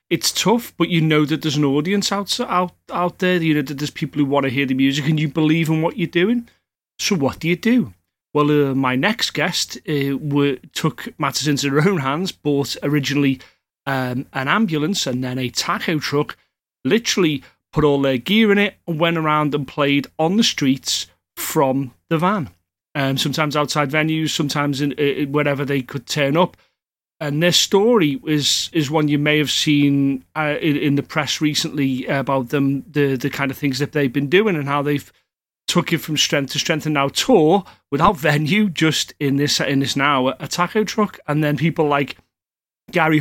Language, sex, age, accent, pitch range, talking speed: English, male, 30-49, British, 140-165 Hz, 200 wpm